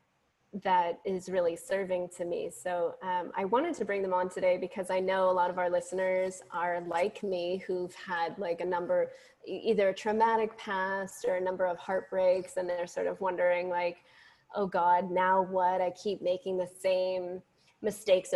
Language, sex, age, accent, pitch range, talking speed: English, female, 20-39, American, 185-235 Hz, 185 wpm